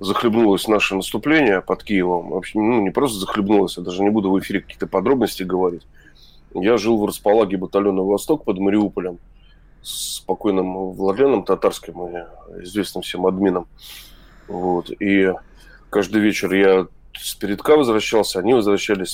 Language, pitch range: Russian, 95-105 Hz